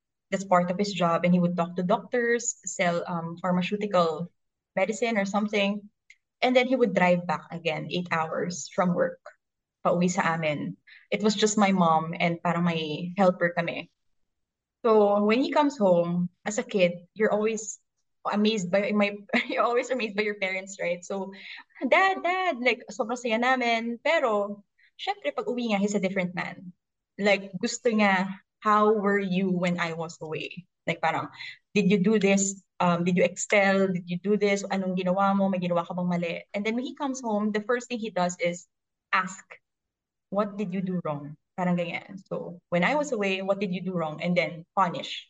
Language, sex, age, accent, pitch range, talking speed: Filipino, female, 20-39, native, 175-215 Hz, 185 wpm